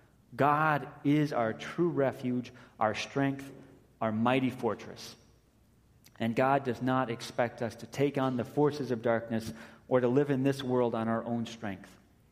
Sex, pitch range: male, 105-125 Hz